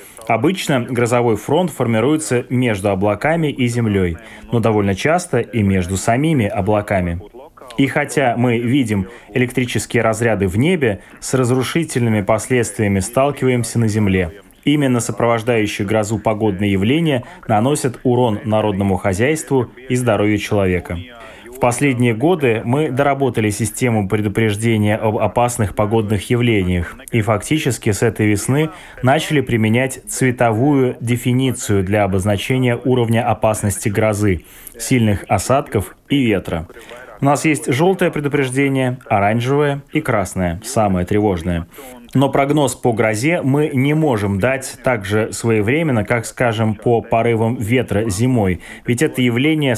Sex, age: male, 20-39